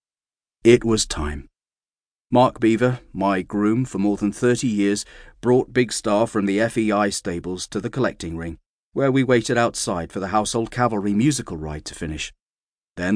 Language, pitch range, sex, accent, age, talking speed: English, 90-125 Hz, male, British, 40-59, 165 wpm